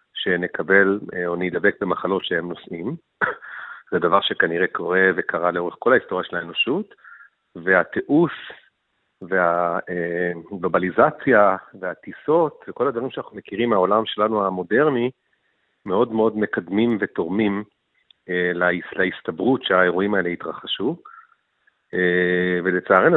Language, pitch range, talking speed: Hebrew, 90-115 Hz, 95 wpm